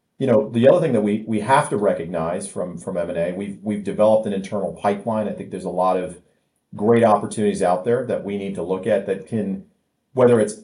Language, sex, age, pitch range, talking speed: English, male, 40-59, 95-115 Hz, 225 wpm